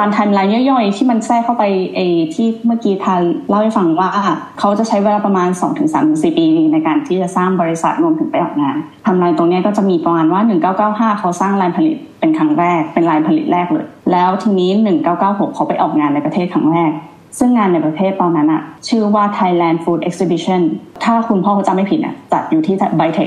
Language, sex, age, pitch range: Thai, female, 20-39, 175-235 Hz